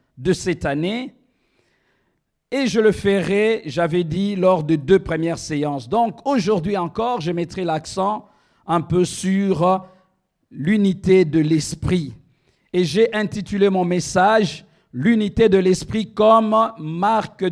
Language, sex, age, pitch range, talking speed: French, male, 50-69, 165-210 Hz, 125 wpm